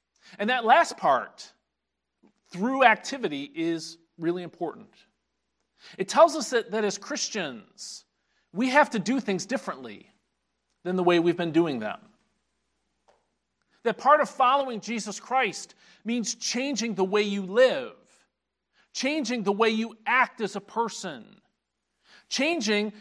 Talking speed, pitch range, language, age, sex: 130 wpm, 175-220 Hz, English, 40-59, male